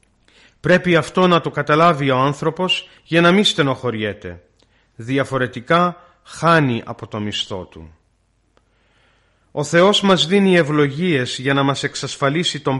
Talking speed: 125 wpm